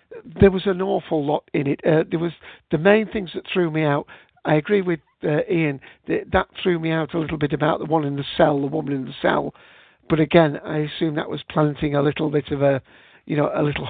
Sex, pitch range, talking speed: male, 140-165 Hz, 245 wpm